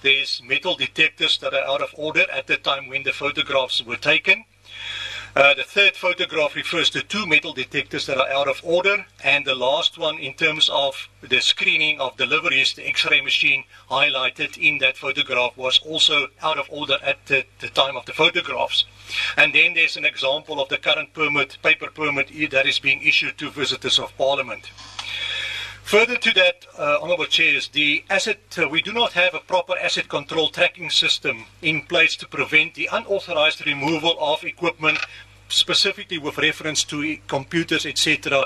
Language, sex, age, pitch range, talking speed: English, male, 50-69, 135-165 Hz, 175 wpm